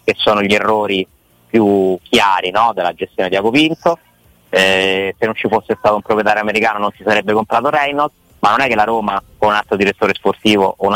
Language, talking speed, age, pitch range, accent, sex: Italian, 210 wpm, 30-49, 100-115 Hz, native, male